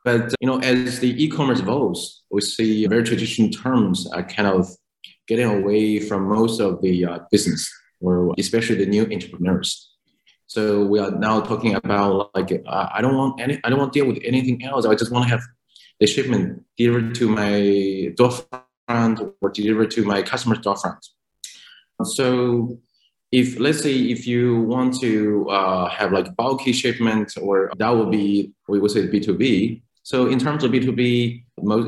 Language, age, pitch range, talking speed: English, 30-49, 105-125 Hz, 175 wpm